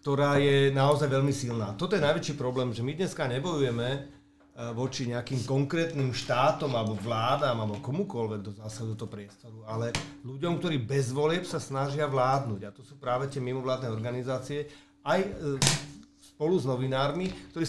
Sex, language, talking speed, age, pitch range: male, Slovak, 155 wpm, 40-59, 110-145 Hz